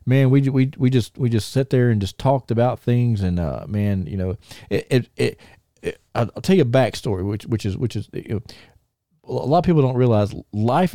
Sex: male